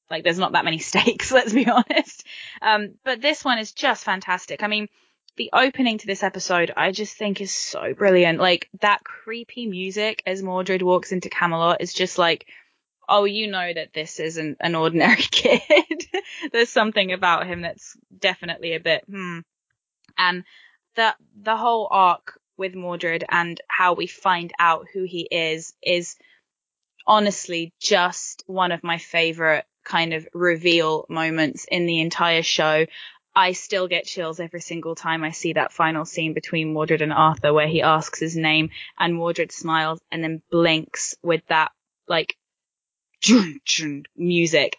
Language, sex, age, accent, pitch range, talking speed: English, female, 10-29, British, 160-200 Hz, 160 wpm